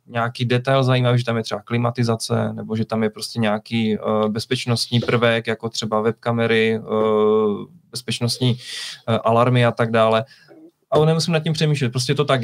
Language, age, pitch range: Czech, 20-39, 115-135 Hz